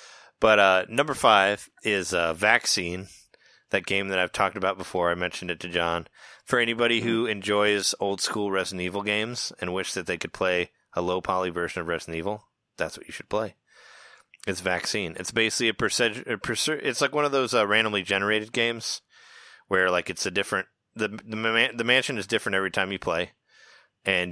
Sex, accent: male, American